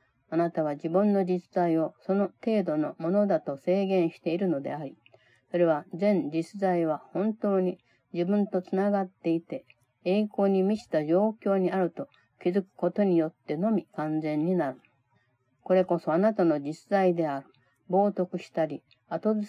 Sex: female